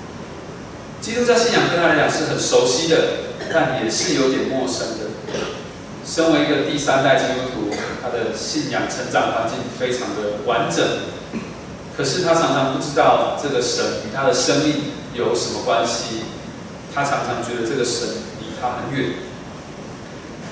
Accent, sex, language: native, male, Chinese